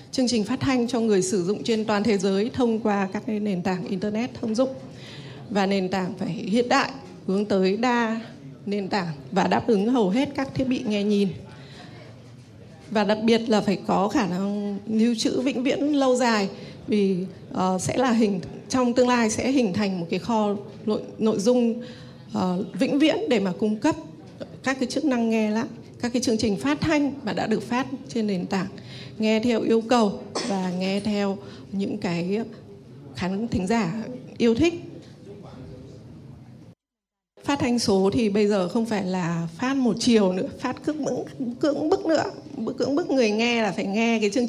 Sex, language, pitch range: female, Vietnamese, 195-250 Hz